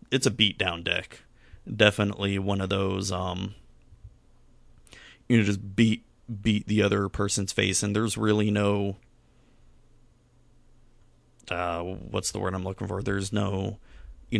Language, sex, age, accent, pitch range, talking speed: English, male, 30-49, American, 95-115 Hz, 140 wpm